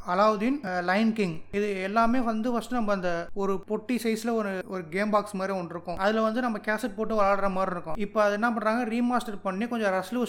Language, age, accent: Tamil, 20-39, native